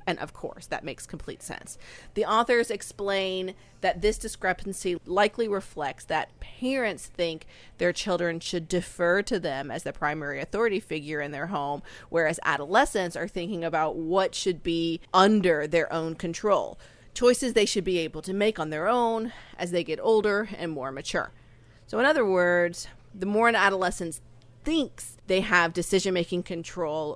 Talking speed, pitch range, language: 165 wpm, 165-205 Hz, English